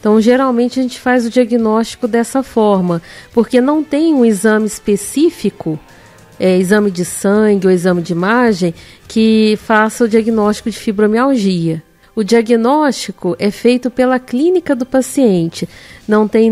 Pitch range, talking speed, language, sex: 190-245 Hz, 140 wpm, Portuguese, female